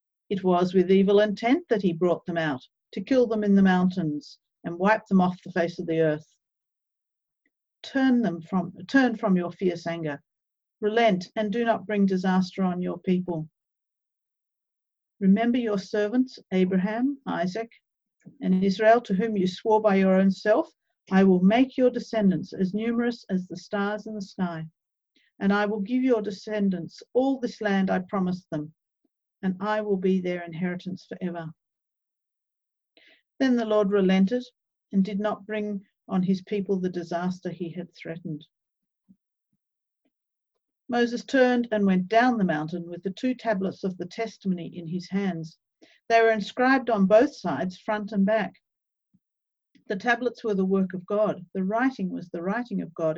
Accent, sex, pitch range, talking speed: Australian, female, 180-220 Hz, 165 wpm